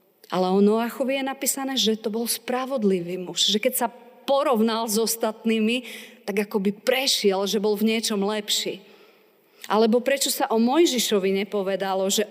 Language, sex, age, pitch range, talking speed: Slovak, female, 40-59, 200-225 Hz, 150 wpm